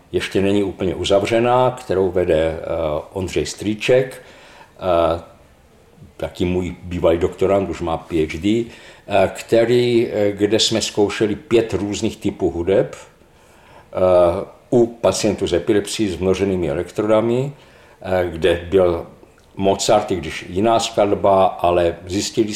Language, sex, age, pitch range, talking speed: Czech, male, 50-69, 95-115 Hz, 105 wpm